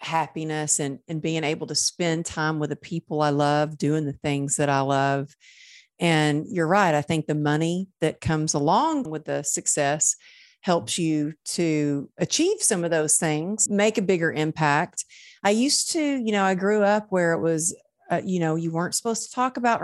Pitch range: 155-220 Hz